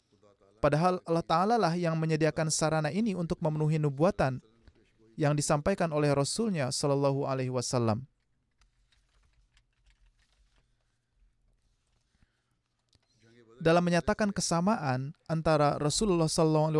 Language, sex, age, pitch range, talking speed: Indonesian, male, 30-49, 135-175 Hz, 90 wpm